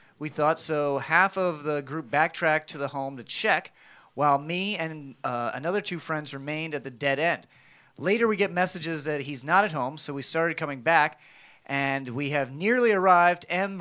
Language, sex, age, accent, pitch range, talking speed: English, male, 30-49, American, 145-180 Hz, 195 wpm